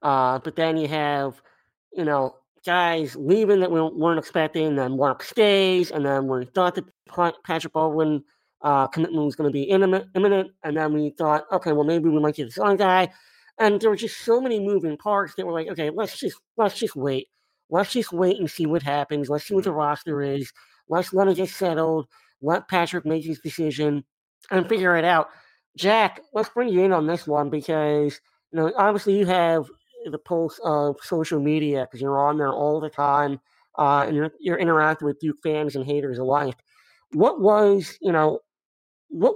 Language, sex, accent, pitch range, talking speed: English, male, American, 145-175 Hz, 200 wpm